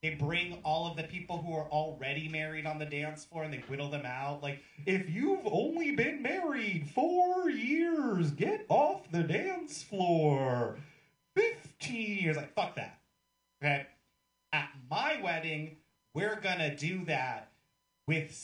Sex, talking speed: male, 155 wpm